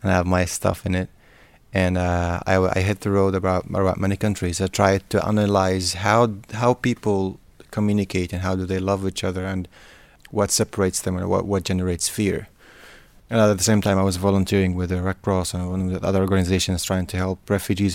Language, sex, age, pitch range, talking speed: English, male, 30-49, 90-105 Hz, 205 wpm